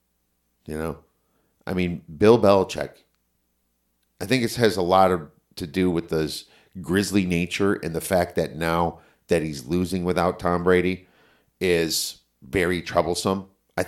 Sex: male